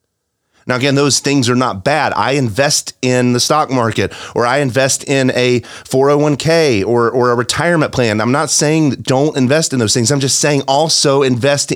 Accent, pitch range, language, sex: American, 110-145 Hz, English, male